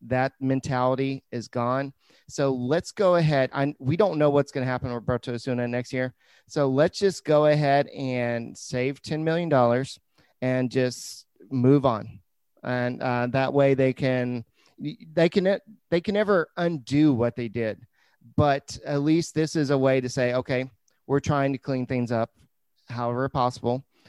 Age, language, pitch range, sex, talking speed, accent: 30-49, English, 120-145 Hz, male, 165 wpm, American